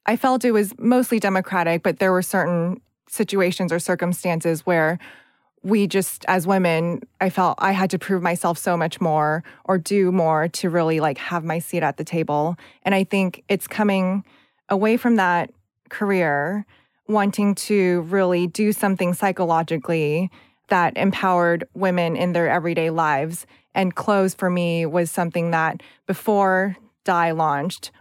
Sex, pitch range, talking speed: female, 165-190 Hz, 155 wpm